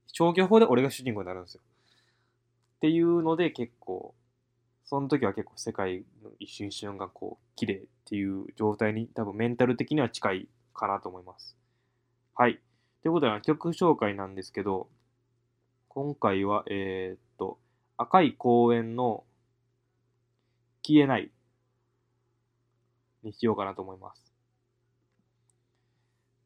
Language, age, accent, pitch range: Japanese, 20-39, native, 115-135 Hz